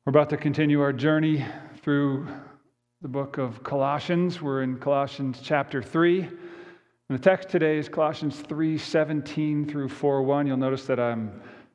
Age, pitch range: 40-59, 120-155 Hz